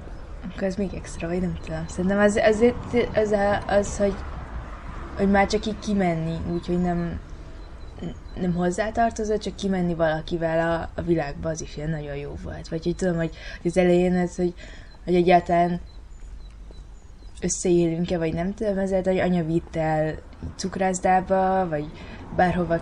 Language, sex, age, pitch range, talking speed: Hungarian, female, 20-39, 140-185 Hz, 155 wpm